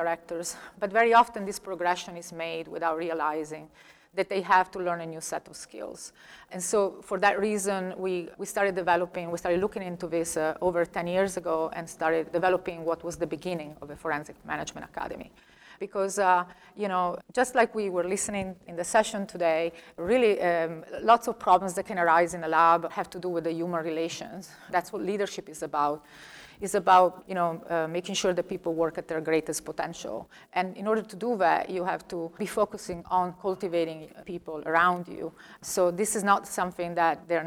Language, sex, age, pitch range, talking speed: English, female, 30-49, 165-190 Hz, 200 wpm